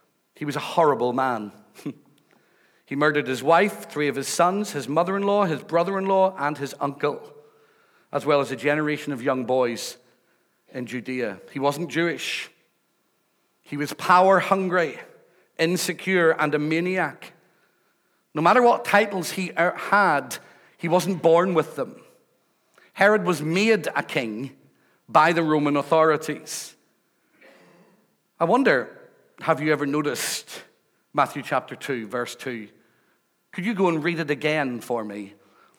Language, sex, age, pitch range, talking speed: English, male, 40-59, 135-180 Hz, 135 wpm